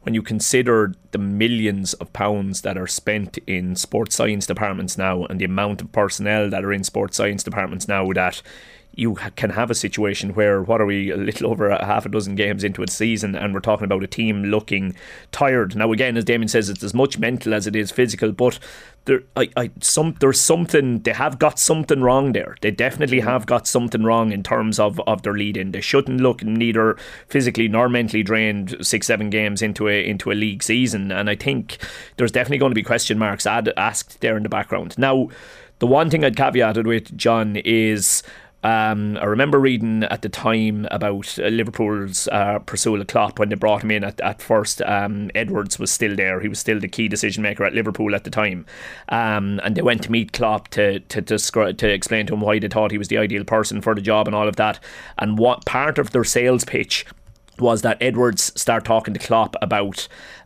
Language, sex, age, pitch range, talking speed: English, male, 30-49, 100-115 Hz, 215 wpm